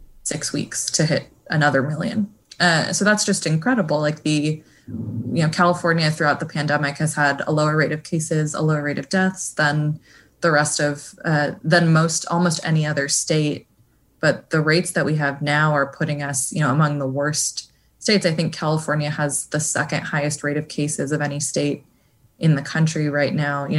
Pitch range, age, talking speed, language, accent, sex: 145-160 Hz, 20-39, 195 wpm, English, American, female